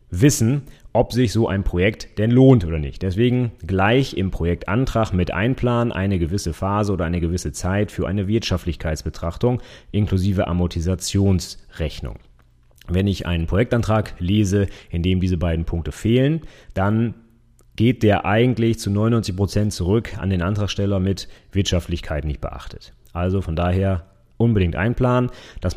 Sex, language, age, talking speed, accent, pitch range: male, German, 30-49, 140 wpm, German, 90-110 Hz